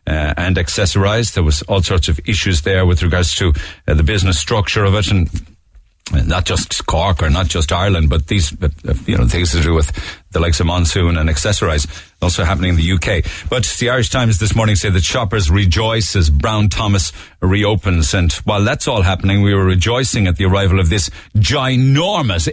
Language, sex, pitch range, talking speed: English, male, 85-110 Hz, 200 wpm